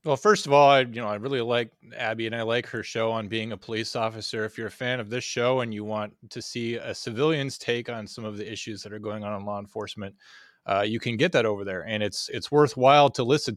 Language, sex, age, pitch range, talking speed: English, male, 20-39, 105-130 Hz, 270 wpm